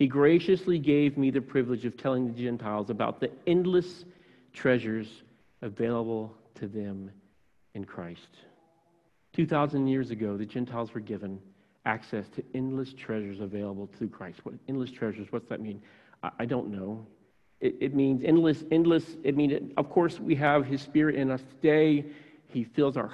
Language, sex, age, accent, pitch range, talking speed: English, male, 40-59, American, 110-150 Hz, 160 wpm